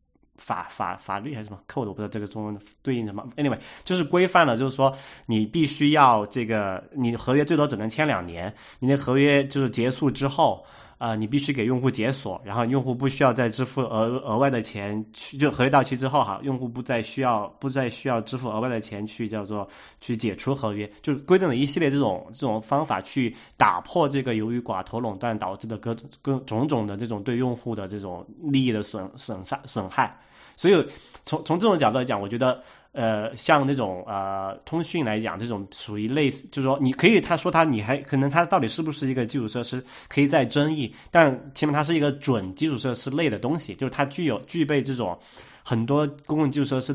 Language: Chinese